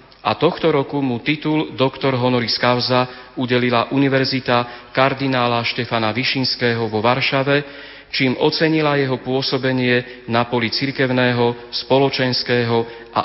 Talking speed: 110 wpm